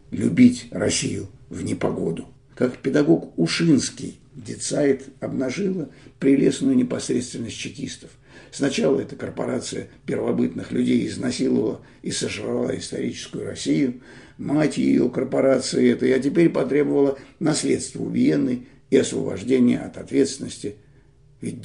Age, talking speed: 60-79, 100 wpm